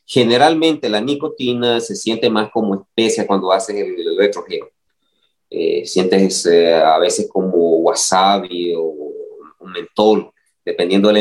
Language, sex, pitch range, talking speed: English, male, 95-115 Hz, 140 wpm